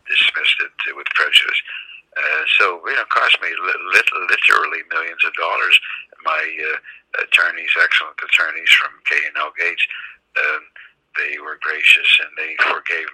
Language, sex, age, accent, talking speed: English, male, 60-79, American, 145 wpm